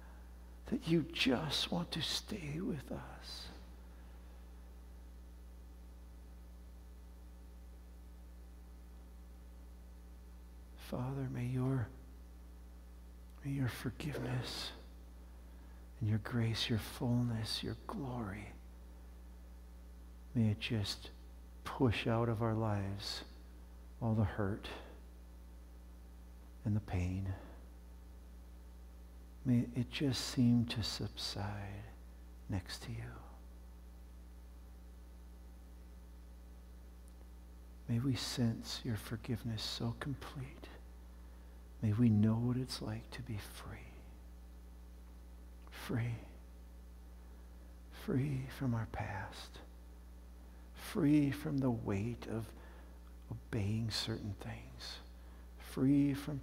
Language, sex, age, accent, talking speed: English, male, 60-79, American, 80 wpm